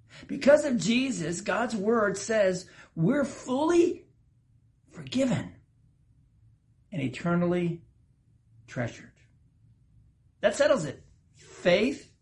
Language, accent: English, American